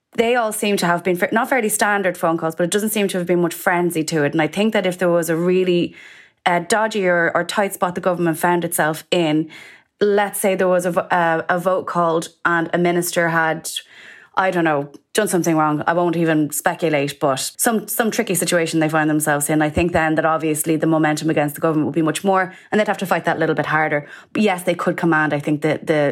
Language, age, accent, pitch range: English, 20-39, Irish, 160-195 Hz